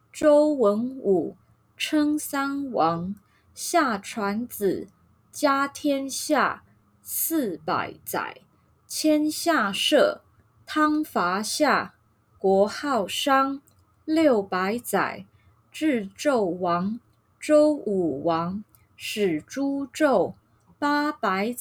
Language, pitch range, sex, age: English, 200-285 Hz, female, 20-39